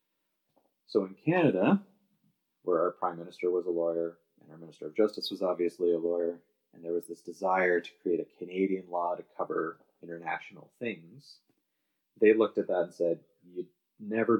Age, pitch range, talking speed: 30-49, 85-110 Hz, 170 wpm